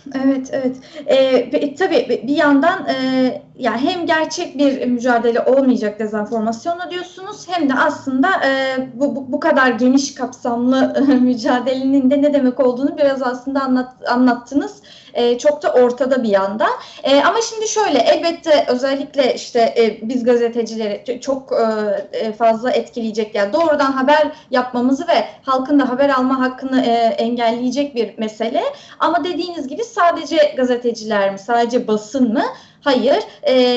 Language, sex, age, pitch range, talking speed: Turkish, female, 30-49, 235-295 Hz, 130 wpm